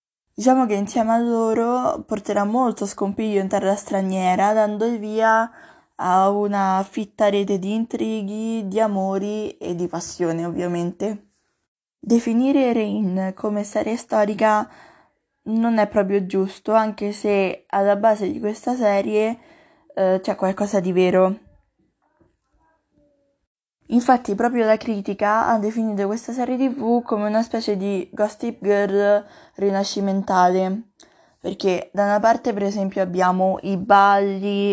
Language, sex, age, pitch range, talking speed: Italian, female, 20-39, 195-225 Hz, 125 wpm